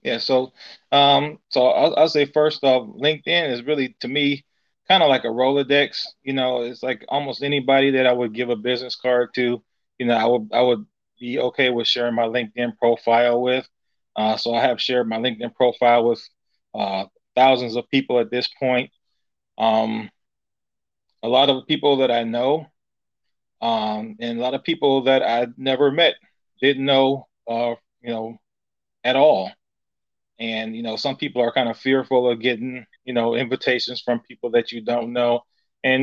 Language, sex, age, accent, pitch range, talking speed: English, male, 20-39, American, 120-135 Hz, 180 wpm